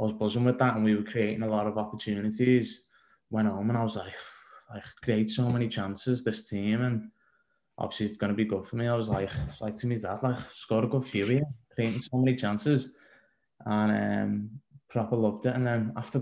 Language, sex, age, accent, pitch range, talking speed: English, male, 20-39, British, 110-125 Hz, 225 wpm